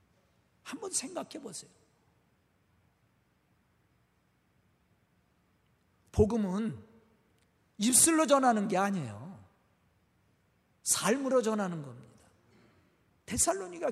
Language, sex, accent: Korean, male, native